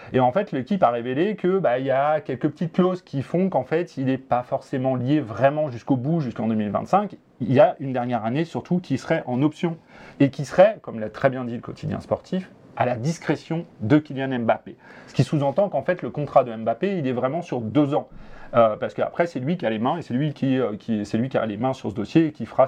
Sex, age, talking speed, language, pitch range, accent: male, 30-49, 255 wpm, French, 125-165 Hz, French